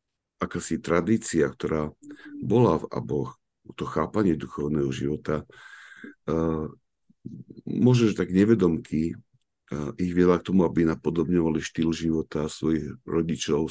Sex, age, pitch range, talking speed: male, 60-79, 75-90 Hz, 100 wpm